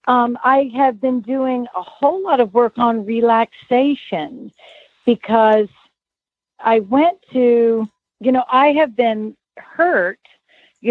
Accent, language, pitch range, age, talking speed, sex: American, English, 205-255 Hz, 50-69, 125 wpm, female